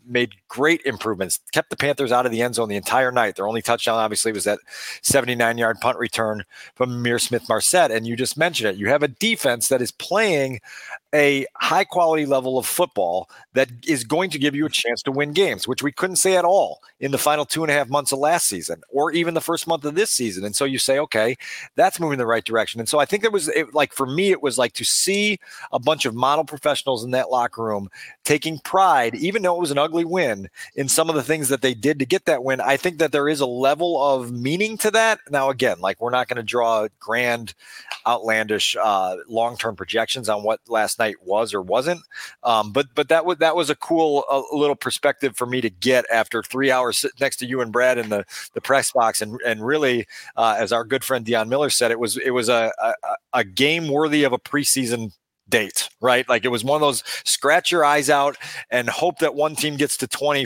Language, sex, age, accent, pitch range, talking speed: English, male, 40-59, American, 115-150 Hz, 240 wpm